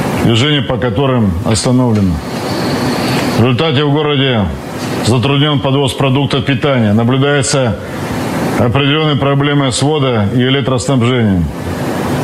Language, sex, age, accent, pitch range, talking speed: Russian, male, 50-69, native, 120-145 Hz, 95 wpm